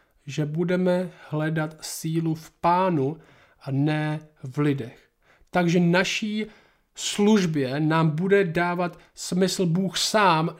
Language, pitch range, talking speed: Czech, 155-190 Hz, 110 wpm